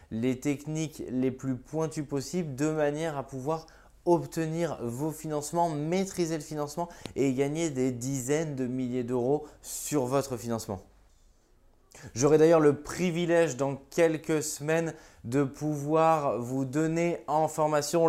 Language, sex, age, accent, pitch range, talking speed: French, male, 20-39, French, 135-160 Hz, 130 wpm